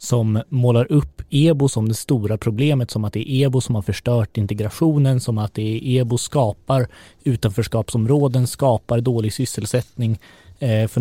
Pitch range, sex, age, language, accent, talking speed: 110-140 Hz, male, 20-39, Swedish, native, 160 wpm